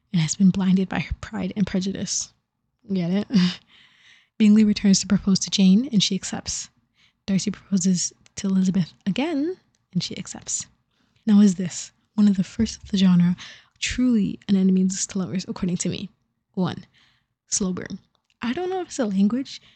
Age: 20-39